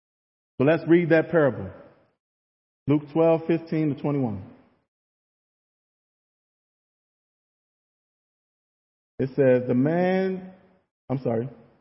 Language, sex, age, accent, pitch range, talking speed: English, male, 40-59, American, 130-190 Hz, 75 wpm